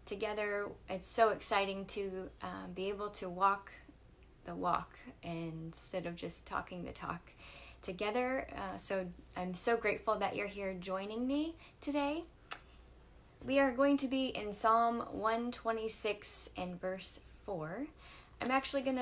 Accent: American